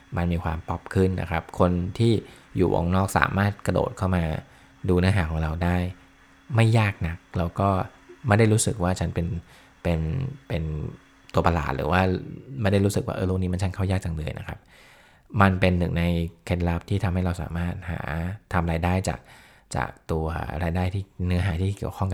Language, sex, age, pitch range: Thai, male, 20-39, 85-100 Hz